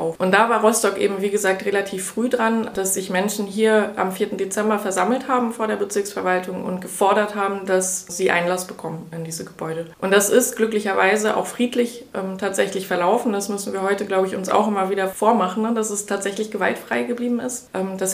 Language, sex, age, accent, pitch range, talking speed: German, female, 20-39, German, 185-215 Hz, 200 wpm